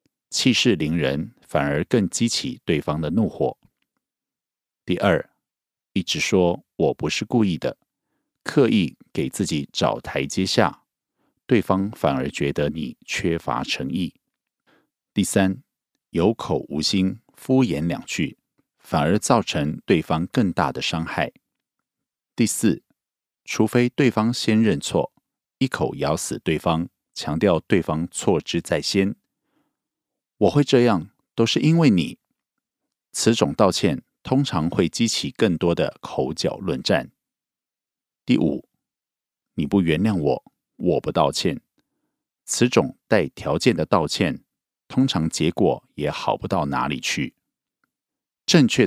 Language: Korean